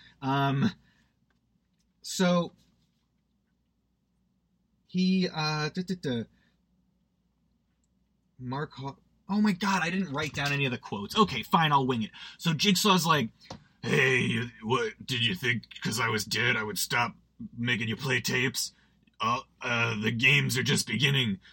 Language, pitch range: English, 120-170 Hz